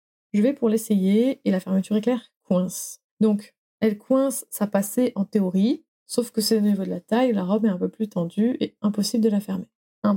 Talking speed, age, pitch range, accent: 220 wpm, 20-39, 195-235 Hz, French